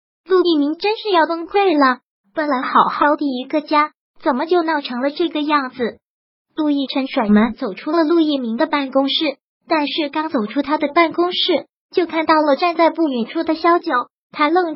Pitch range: 270-325 Hz